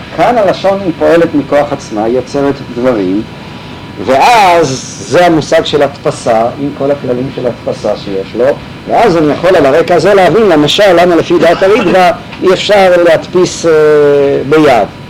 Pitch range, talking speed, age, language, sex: 130-160 Hz, 150 wpm, 50-69, Hebrew, male